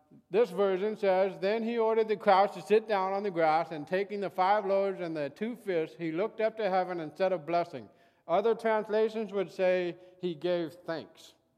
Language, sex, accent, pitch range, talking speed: English, male, American, 160-215 Hz, 200 wpm